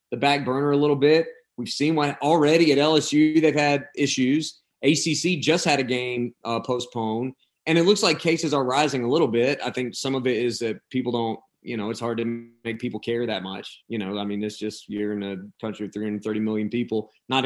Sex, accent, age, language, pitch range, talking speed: male, American, 30-49, English, 110-145 Hz, 225 wpm